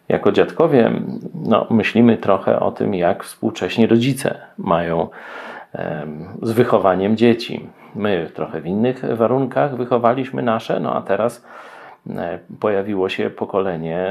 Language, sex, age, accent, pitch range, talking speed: Polish, male, 40-59, native, 95-120 Hz, 125 wpm